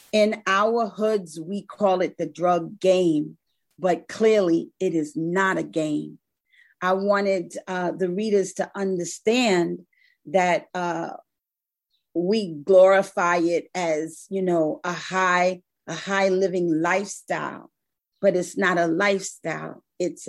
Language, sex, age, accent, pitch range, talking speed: English, female, 40-59, American, 165-205 Hz, 125 wpm